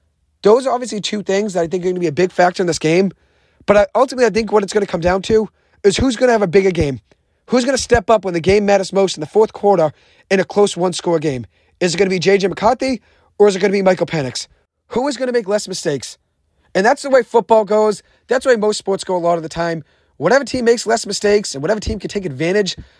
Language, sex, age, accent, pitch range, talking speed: English, male, 30-49, American, 165-215 Hz, 275 wpm